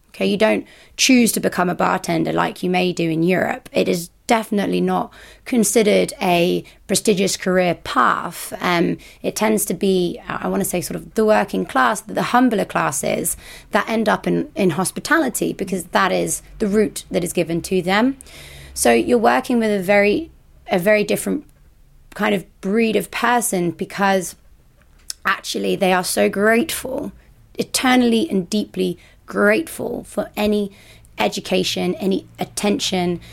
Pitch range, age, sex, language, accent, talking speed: 180-215 Hz, 20-39, female, English, British, 155 wpm